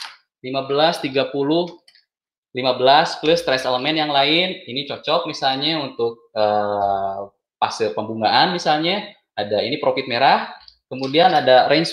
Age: 20-39